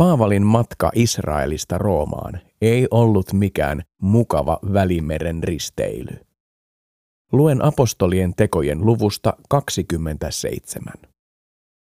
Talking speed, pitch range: 75 wpm, 90-120 Hz